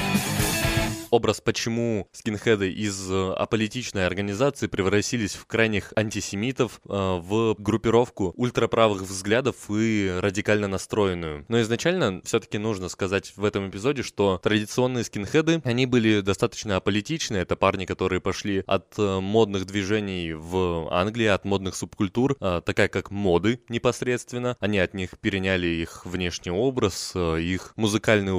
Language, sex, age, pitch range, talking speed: Russian, male, 20-39, 95-115 Hz, 120 wpm